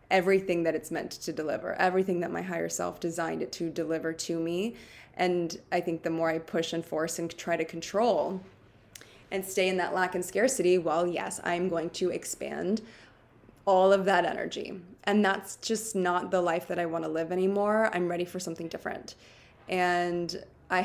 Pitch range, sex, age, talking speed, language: 160-185 Hz, female, 20-39, 190 wpm, English